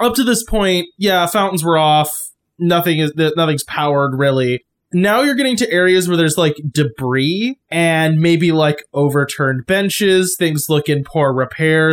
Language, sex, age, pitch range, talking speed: English, male, 20-39, 150-185 Hz, 160 wpm